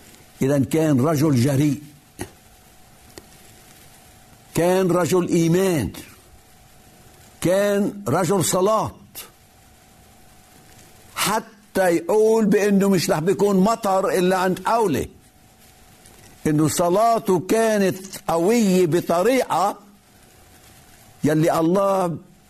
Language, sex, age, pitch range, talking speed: Arabic, male, 60-79, 145-195 Hz, 70 wpm